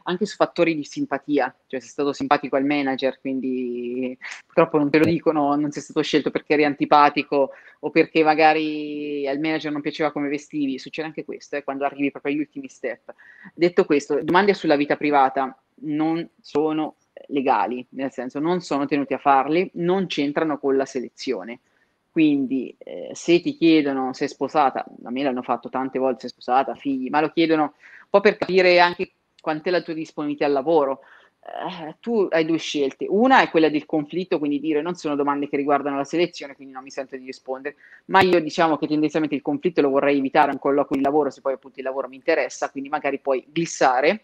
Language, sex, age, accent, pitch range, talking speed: Italian, female, 30-49, native, 135-160 Hz, 200 wpm